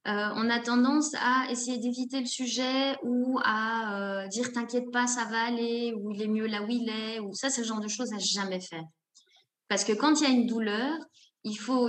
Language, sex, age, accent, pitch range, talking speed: French, female, 20-39, French, 195-245 Hz, 255 wpm